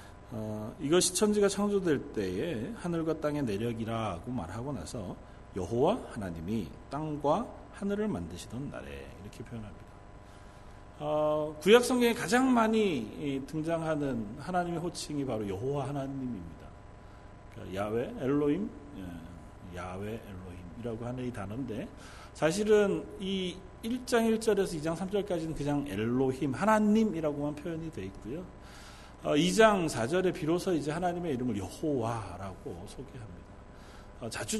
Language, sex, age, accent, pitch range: Korean, male, 40-59, native, 110-180 Hz